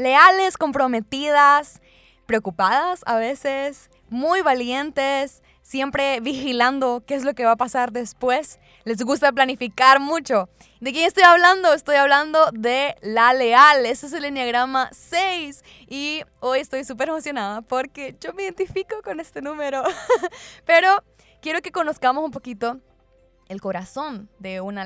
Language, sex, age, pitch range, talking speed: Spanish, female, 20-39, 210-280 Hz, 140 wpm